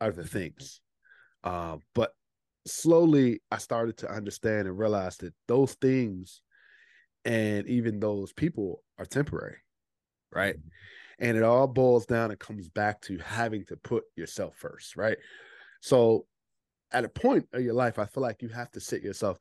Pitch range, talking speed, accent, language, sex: 100-130 Hz, 160 wpm, American, English, male